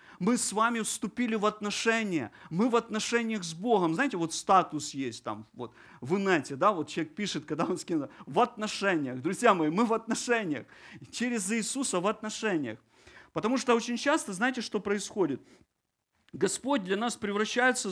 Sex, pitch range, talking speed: male, 165-235 Hz, 160 wpm